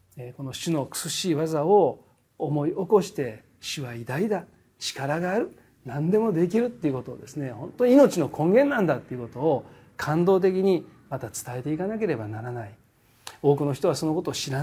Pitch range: 130-190 Hz